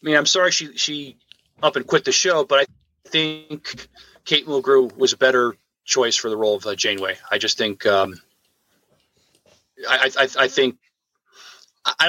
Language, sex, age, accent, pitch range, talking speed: English, male, 30-49, American, 125-175 Hz, 170 wpm